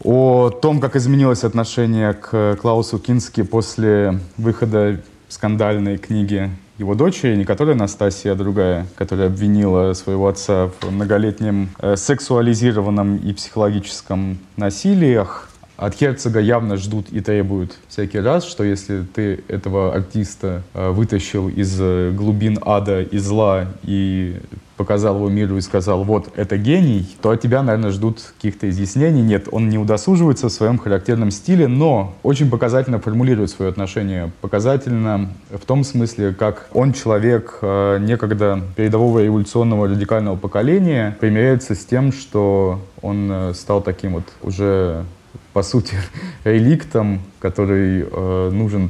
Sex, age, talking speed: male, 20-39, 130 wpm